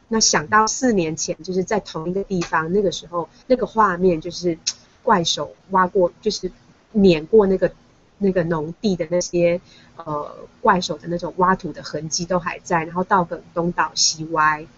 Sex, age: female, 20-39